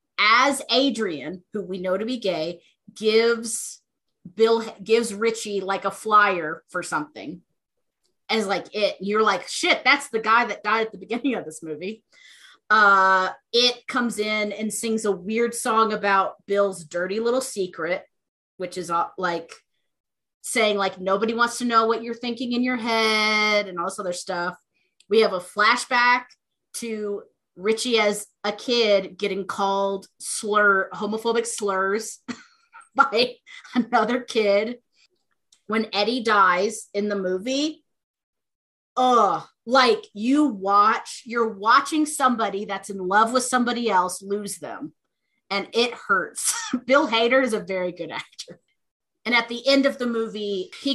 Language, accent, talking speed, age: English, American, 145 wpm, 30-49